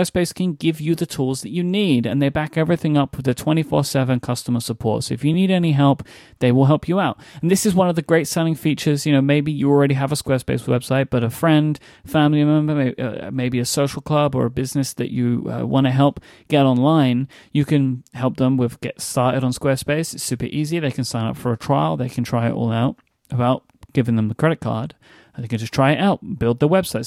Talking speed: 245 wpm